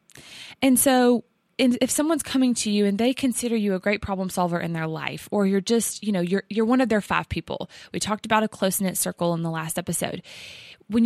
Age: 20-39